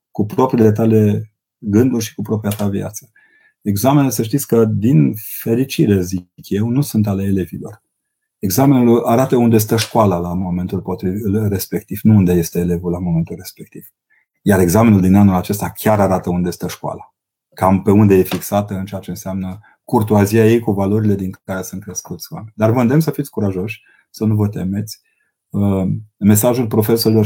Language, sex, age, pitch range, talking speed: Romanian, male, 30-49, 95-110 Hz, 165 wpm